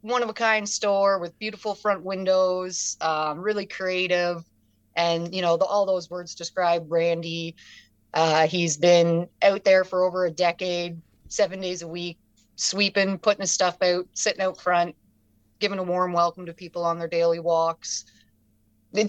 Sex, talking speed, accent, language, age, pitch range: female, 155 wpm, American, English, 30-49, 160-185 Hz